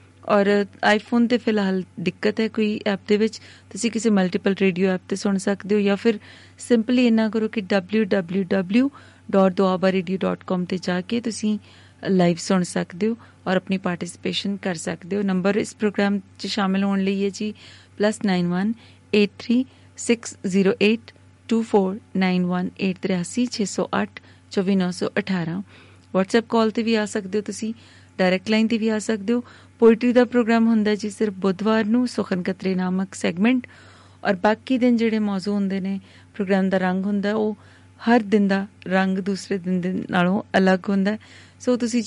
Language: Punjabi